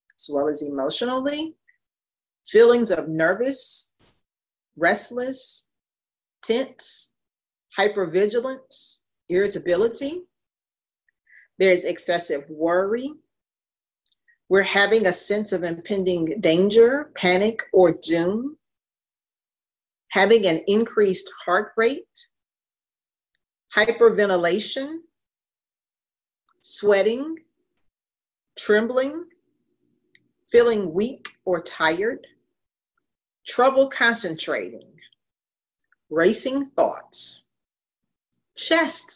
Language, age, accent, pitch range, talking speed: English, 40-59, American, 175-275 Hz, 65 wpm